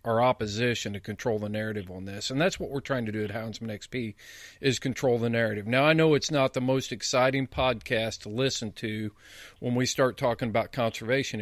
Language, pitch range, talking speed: English, 110-135 Hz, 210 wpm